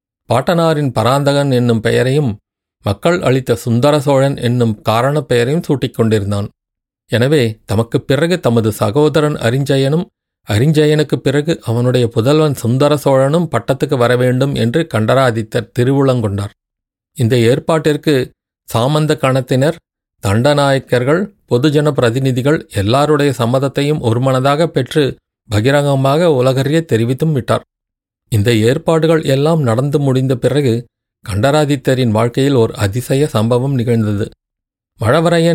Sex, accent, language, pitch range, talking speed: male, native, Tamil, 120-150 Hz, 95 wpm